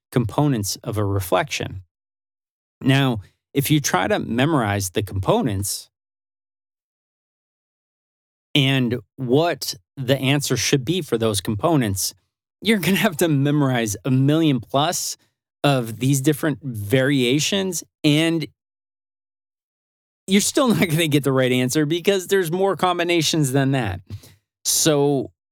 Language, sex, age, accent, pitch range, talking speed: English, male, 30-49, American, 105-145 Hz, 120 wpm